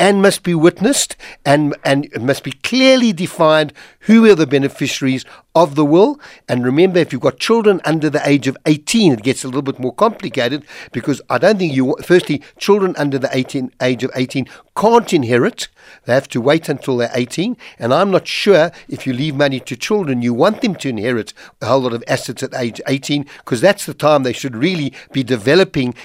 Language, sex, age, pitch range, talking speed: English, male, 60-79, 125-165 Hz, 205 wpm